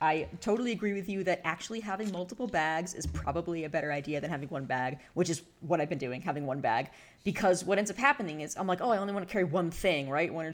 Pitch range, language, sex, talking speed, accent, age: 150-185 Hz, English, female, 270 wpm, American, 30-49